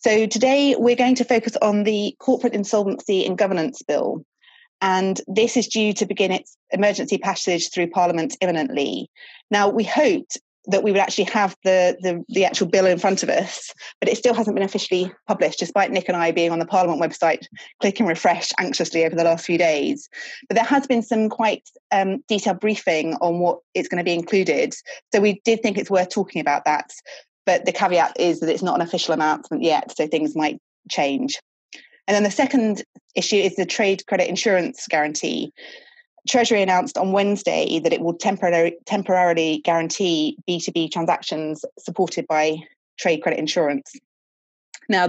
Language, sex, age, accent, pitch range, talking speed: English, female, 30-49, British, 170-225 Hz, 180 wpm